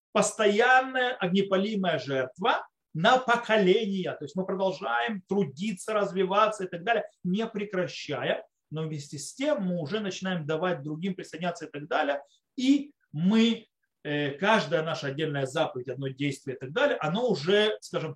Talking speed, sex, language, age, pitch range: 140 wpm, male, Russian, 30-49, 150-210 Hz